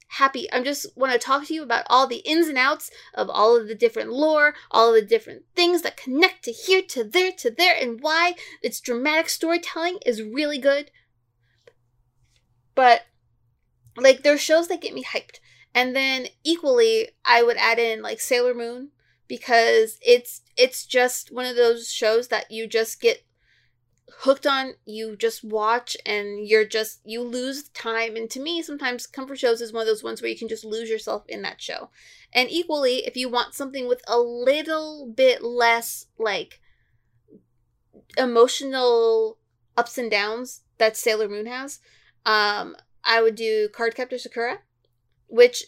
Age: 30-49